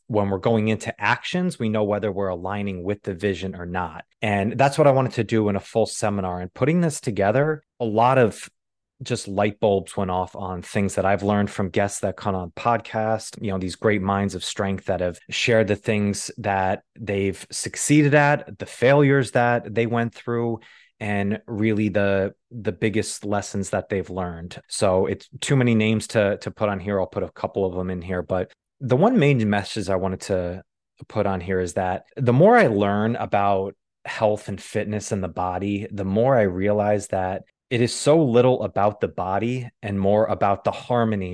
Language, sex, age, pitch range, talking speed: English, male, 20-39, 95-115 Hz, 200 wpm